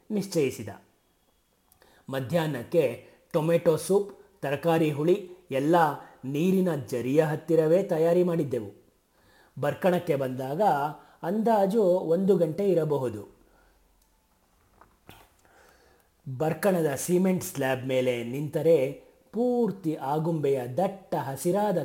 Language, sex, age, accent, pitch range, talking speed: Kannada, male, 30-49, native, 130-175 Hz, 75 wpm